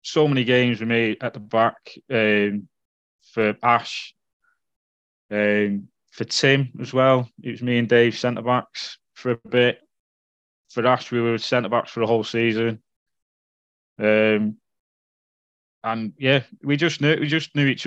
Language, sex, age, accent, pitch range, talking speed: English, male, 20-39, British, 105-120 Hz, 155 wpm